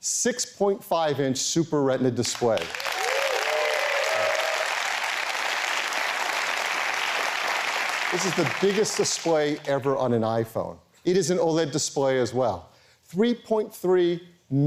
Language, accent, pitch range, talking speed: English, American, 130-175 Hz, 85 wpm